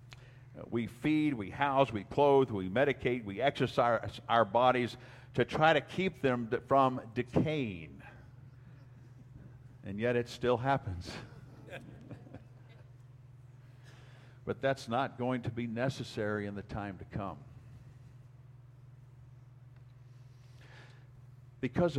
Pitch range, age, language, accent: 120-130 Hz, 50-69, English, American